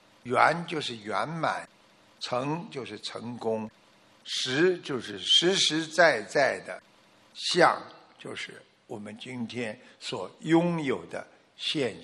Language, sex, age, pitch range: Chinese, male, 50-69, 130-195 Hz